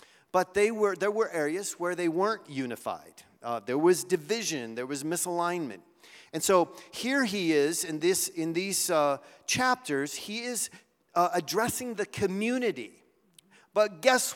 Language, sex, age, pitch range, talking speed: English, male, 40-59, 150-220 Hz, 140 wpm